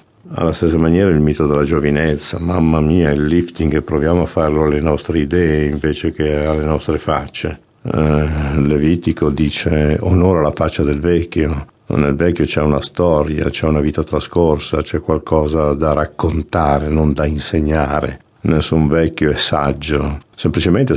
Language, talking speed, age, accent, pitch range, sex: Italian, 150 wpm, 50-69, native, 75-85 Hz, male